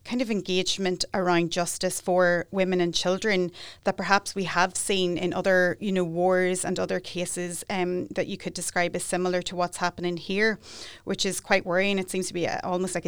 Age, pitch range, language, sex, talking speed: 30-49, 175-190 Hz, English, female, 200 wpm